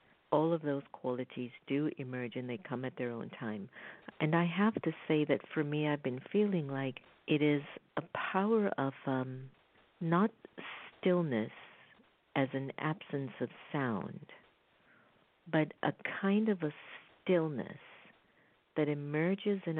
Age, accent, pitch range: 50-69, American, 135-170 Hz